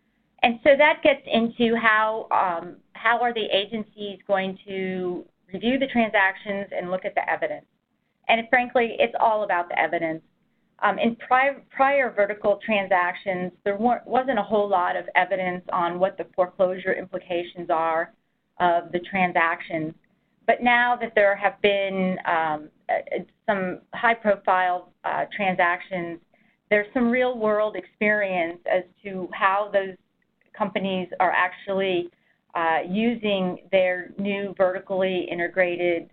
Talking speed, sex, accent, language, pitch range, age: 135 wpm, female, American, English, 180-220 Hz, 30-49